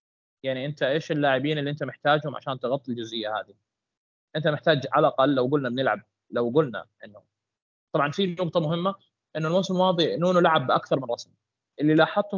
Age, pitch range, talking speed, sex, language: 20-39, 125-170 Hz, 170 wpm, male, Arabic